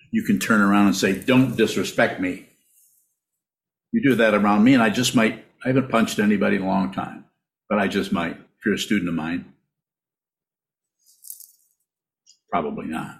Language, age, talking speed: English, 50-69, 175 wpm